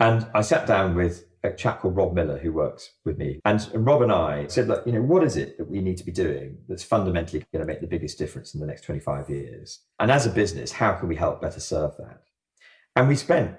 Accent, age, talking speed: British, 40-59, 250 wpm